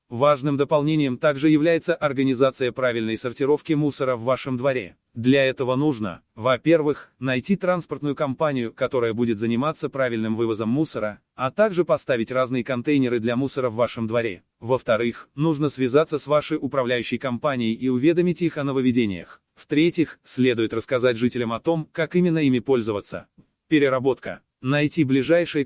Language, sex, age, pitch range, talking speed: Russian, male, 30-49, 125-155 Hz, 140 wpm